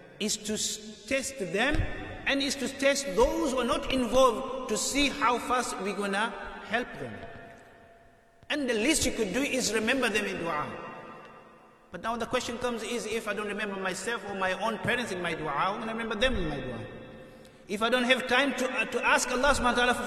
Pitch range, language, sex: 155-230 Hz, English, male